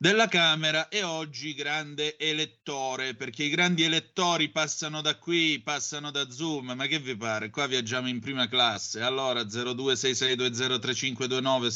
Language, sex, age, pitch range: Italian, male, 30-49, 115-160 Hz